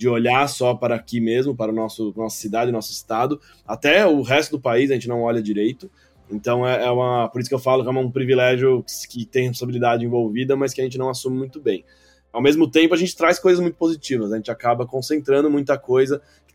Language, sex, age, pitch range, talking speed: Portuguese, male, 20-39, 115-140 Hz, 250 wpm